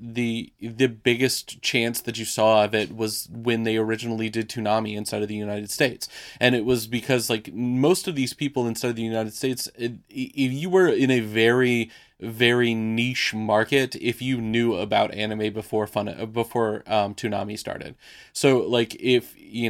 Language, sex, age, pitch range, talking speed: English, male, 20-39, 110-130 Hz, 180 wpm